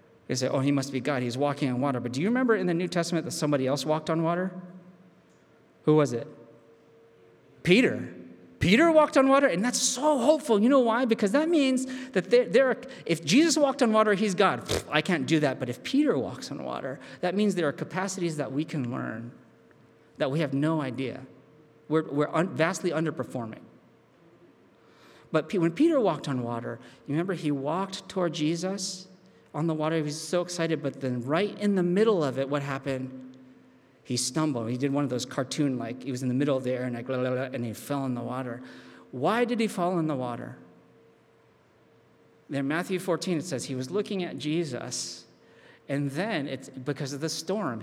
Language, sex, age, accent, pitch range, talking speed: English, male, 40-59, American, 135-200 Hz, 200 wpm